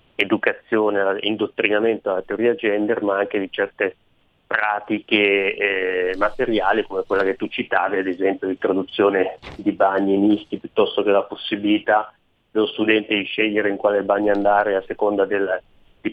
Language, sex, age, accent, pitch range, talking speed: Italian, male, 30-49, native, 95-110 Hz, 150 wpm